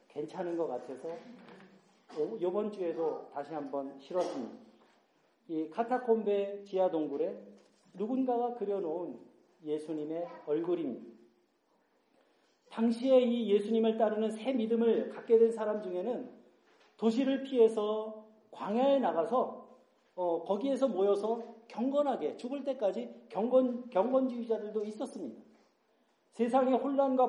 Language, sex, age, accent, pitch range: Korean, male, 40-59, native, 195-255 Hz